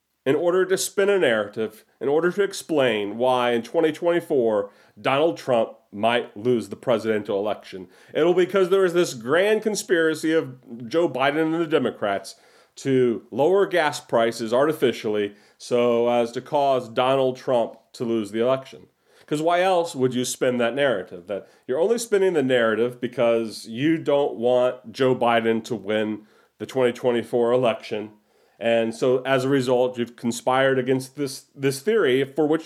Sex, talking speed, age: male, 160 wpm, 40-59